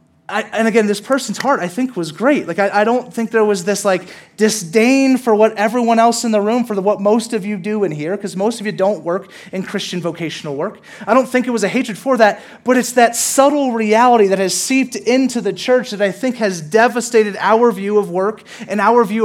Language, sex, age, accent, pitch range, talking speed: English, male, 30-49, American, 170-215 Hz, 235 wpm